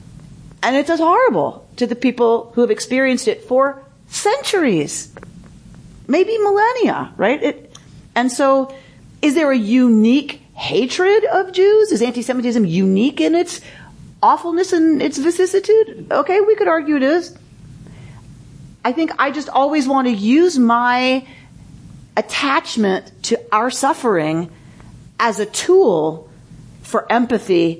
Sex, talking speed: female, 125 wpm